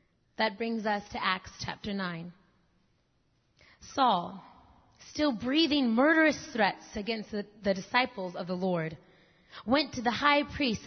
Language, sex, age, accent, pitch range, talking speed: English, female, 30-49, American, 195-285 Hz, 125 wpm